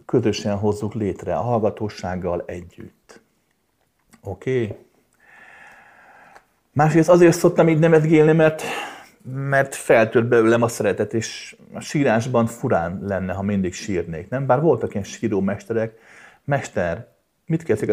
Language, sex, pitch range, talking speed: Hungarian, male, 95-135 Hz, 120 wpm